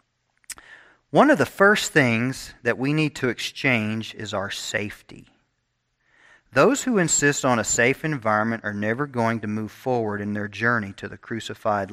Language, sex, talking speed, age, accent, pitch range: English, male, 160 wpm, 40-59, American, 110-140 Hz